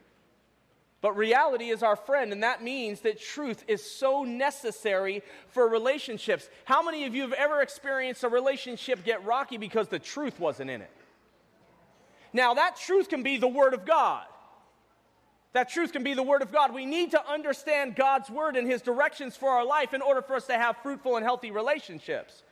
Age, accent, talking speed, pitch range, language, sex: 30-49, American, 190 wpm, 245-295 Hz, English, male